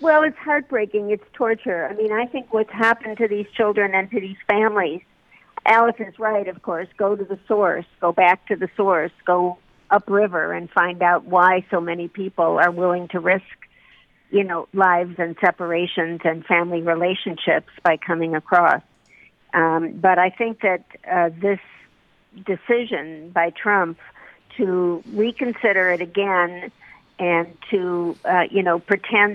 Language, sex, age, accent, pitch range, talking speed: English, female, 50-69, American, 175-205 Hz, 155 wpm